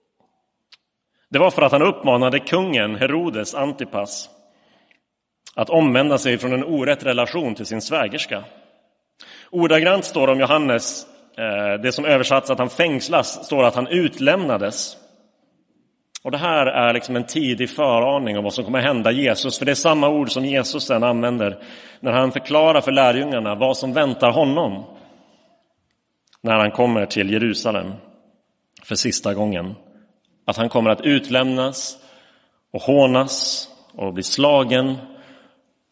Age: 30-49